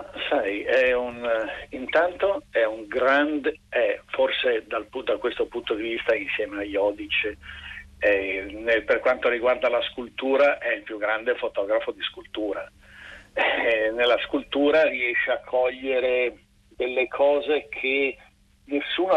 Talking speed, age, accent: 135 wpm, 50-69, native